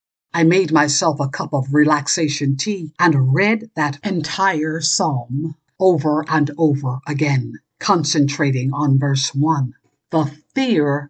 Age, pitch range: 60-79, 140-195 Hz